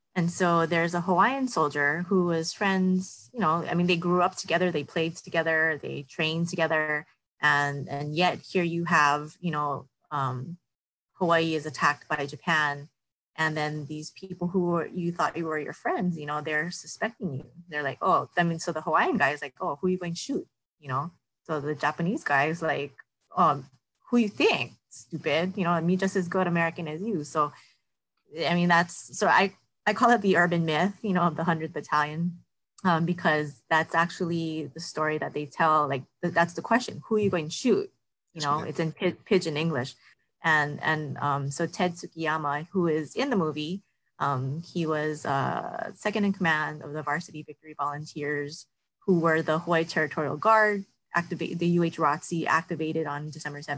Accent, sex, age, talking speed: American, female, 20-39, 195 wpm